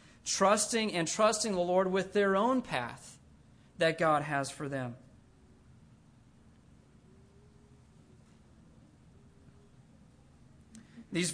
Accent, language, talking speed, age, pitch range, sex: American, English, 80 wpm, 40-59, 165-215 Hz, male